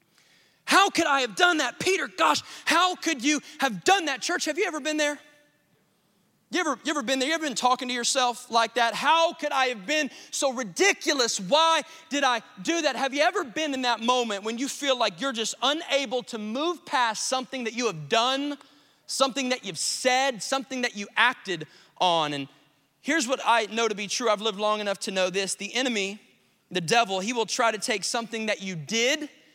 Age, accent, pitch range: 20-39, American, 210-280 Hz